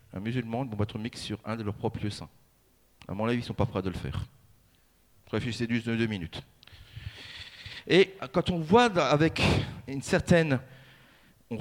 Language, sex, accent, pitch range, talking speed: French, male, French, 110-155 Hz, 195 wpm